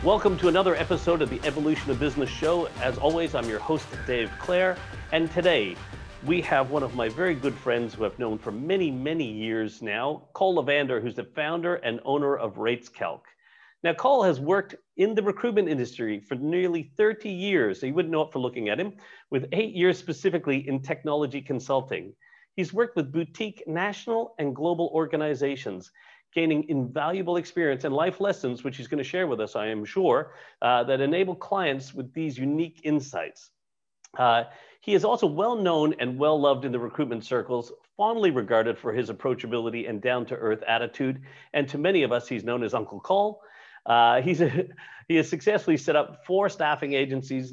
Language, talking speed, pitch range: English, 180 wpm, 125-175 Hz